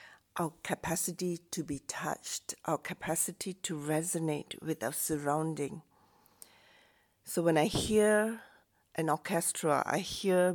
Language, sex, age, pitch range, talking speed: English, female, 50-69, 160-195 Hz, 115 wpm